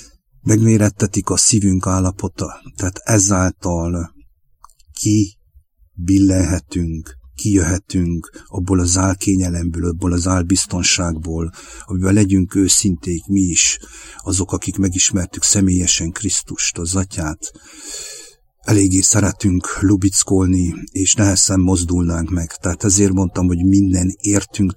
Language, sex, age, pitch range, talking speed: English, male, 50-69, 85-100 Hz, 95 wpm